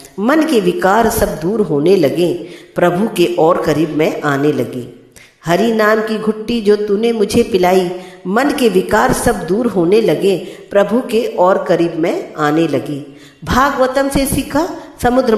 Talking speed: 155 wpm